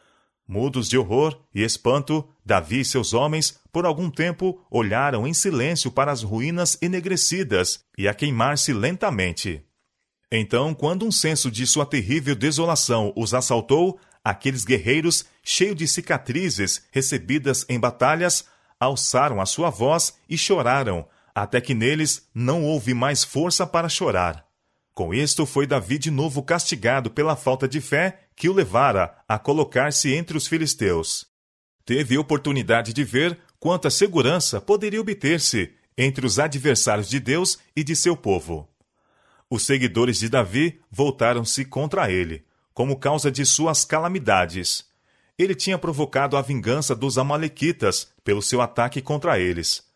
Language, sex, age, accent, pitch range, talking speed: Portuguese, male, 40-59, Brazilian, 115-160 Hz, 140 wpm